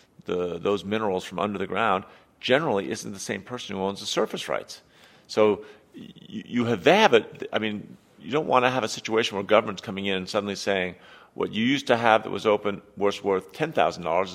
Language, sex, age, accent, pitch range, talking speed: English, male, 40-59, American, 95-115 Hz, 215 wpm